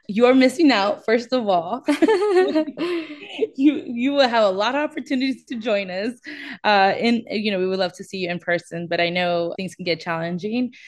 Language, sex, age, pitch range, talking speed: English, female, 20-39, 175-225 Hz, 200 wpm